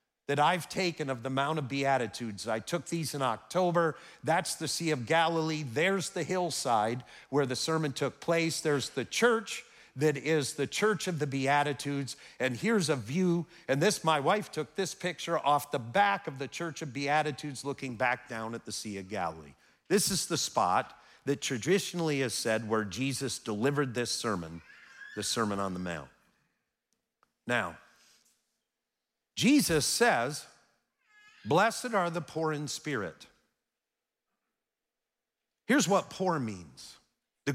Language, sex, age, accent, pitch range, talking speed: English, male, 50-69, American, 135-185 Hz, 150 wpm